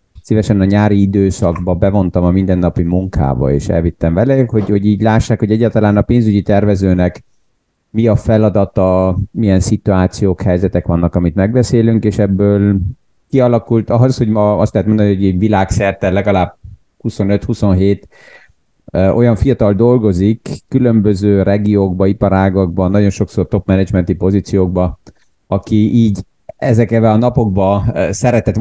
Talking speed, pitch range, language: 125 wpm, 95-115 Hz, Hungarian